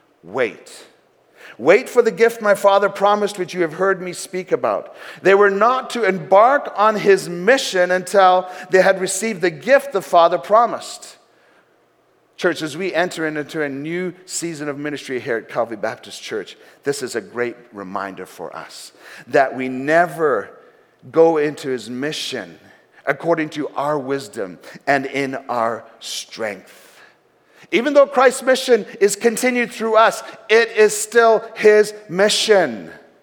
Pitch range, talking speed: 150-210 Hz, 150 wpm